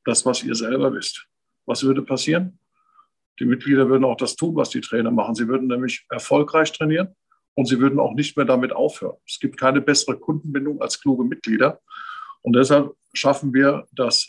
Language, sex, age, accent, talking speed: German, male, 50-69, German, 185 wpm